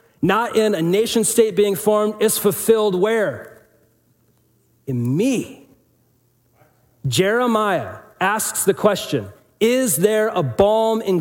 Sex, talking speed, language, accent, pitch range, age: male, 110 wpm, English, American, 120-180 Hz, 40-59